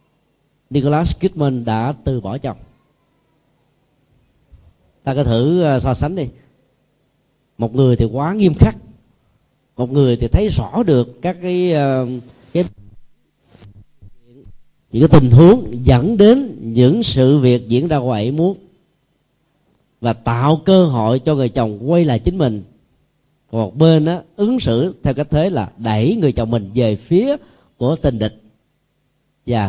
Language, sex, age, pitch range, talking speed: Vietnamese, male, 40-59, 120-155 Hz, 135 wpm